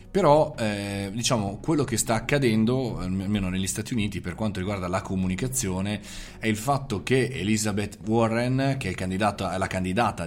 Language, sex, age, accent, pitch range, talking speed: Italian, male, 20-39, native, 90-115 Hz, 150 wpm